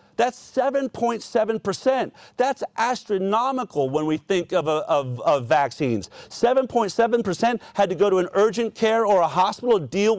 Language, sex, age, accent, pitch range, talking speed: English, male, 40-59, American, 175-230 Hz, 145 wpm